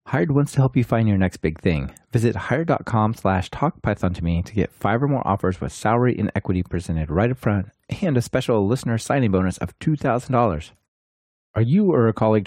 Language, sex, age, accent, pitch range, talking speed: English, male, 30-49, American, 95-130 Hz, 205 wpm